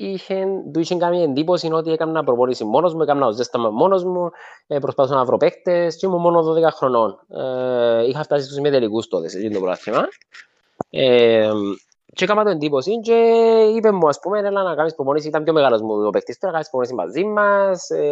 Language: Greek